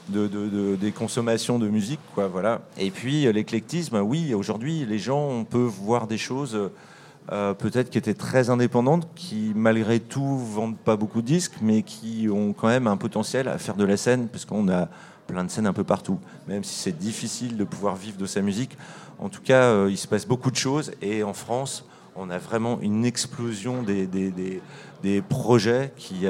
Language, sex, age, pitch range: French, male, 40-59, 100-125 Hz